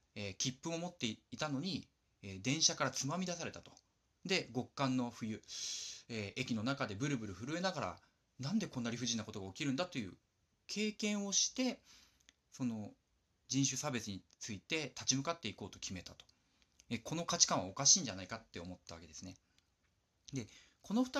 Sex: male